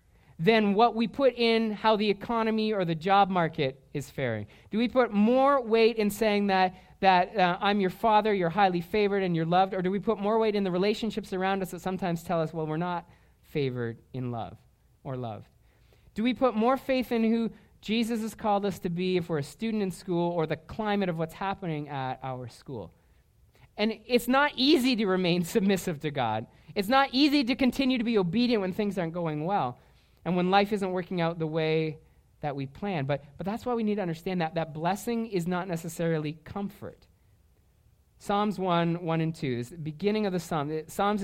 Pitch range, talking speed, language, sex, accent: 155-210 Hz, 210 wpm, English, male, American